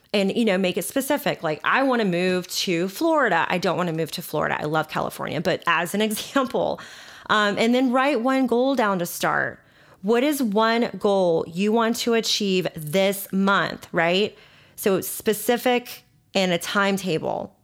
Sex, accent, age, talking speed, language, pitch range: female, American, 30-49, 175 wpm, English, 175-225 Hz